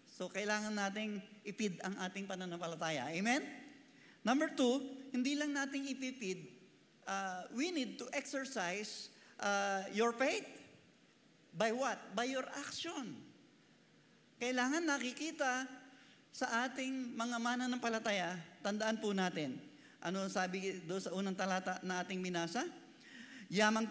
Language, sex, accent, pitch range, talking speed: Filipino, male, native, 185-245 Hz, 120 wpm